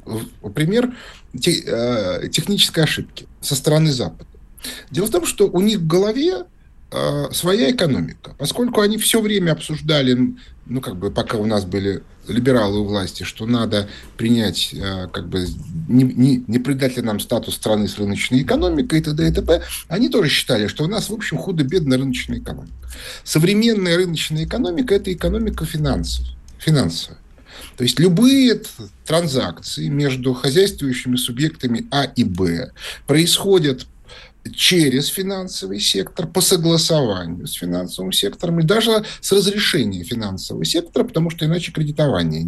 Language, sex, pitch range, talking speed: Russian, male, 110-180 Hz, 135 wpm